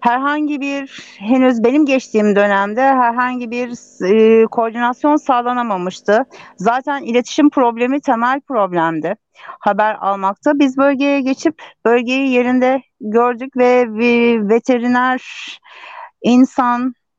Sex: female